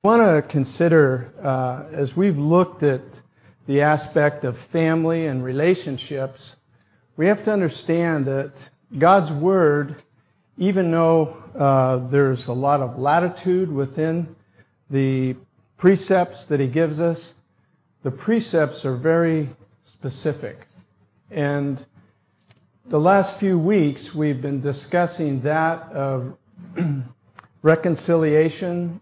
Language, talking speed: English, 110 wpm